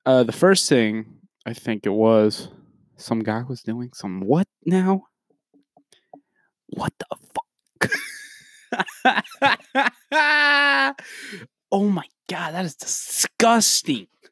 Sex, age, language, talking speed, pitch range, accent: male, 20-39, English, 100 wpm, 150-240 Hz, American